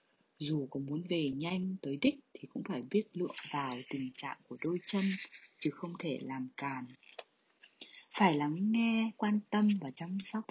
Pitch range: 140-200 Hz